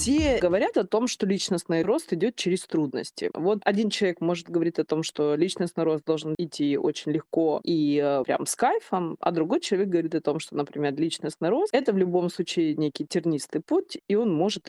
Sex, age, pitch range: female, 20-39, 155-210 Hz